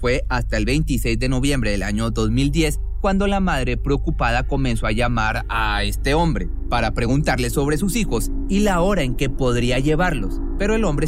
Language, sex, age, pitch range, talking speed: Spanish, male, 30-49, 115-155 Hz, 185 wpm